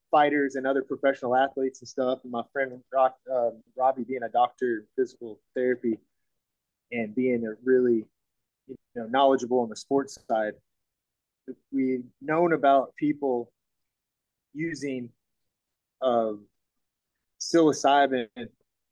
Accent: American